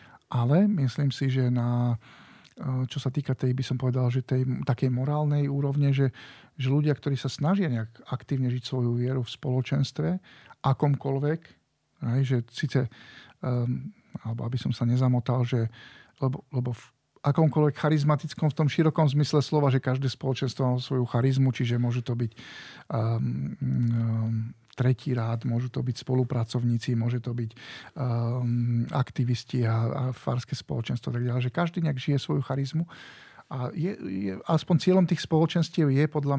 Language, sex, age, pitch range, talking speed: Slovak, male, 40-59, 125-145 Hz, 155 wpm